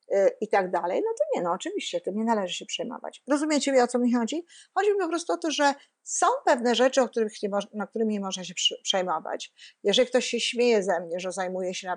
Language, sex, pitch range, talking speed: Polish, female, 195-250 Hz, 245 wpm